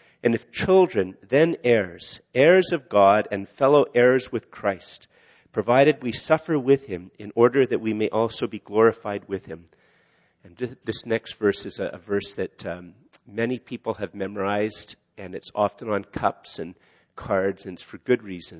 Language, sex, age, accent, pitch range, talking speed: English, male, 50-69, American, 100-125 Hz, 170 wpm